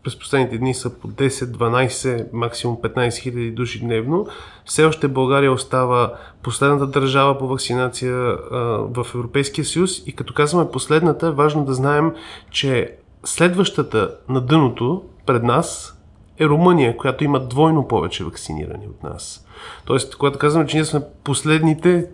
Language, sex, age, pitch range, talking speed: Bulgarian, male, 30-49, 125-155 Hz, 140 wpm